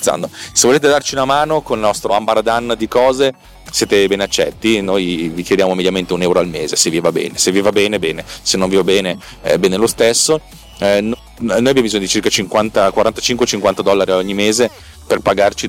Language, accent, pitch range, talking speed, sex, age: Italian, native, 95-130 Hz, 190 wpm, male, 30-49